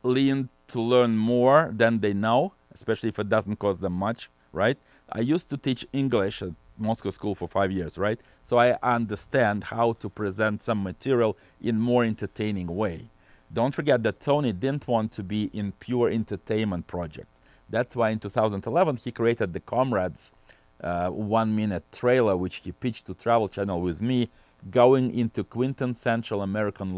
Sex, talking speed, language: male, 170 wpm, English